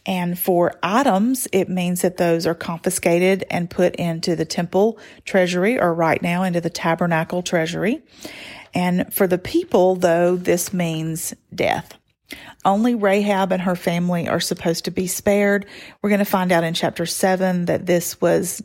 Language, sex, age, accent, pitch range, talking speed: English, female, 40-59, American, 175-210 Hz, 165 wpm